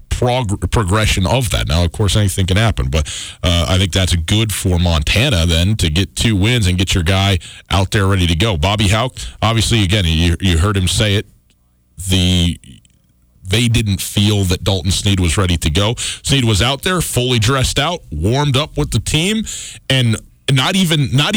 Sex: male